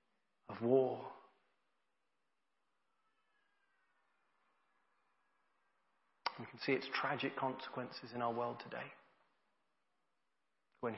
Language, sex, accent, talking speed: English, male, British, 70 wpm